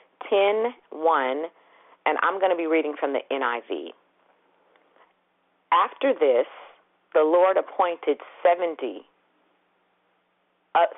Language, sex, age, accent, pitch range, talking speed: English, female, 40-59, American, 170-250 Hz, 95 wpm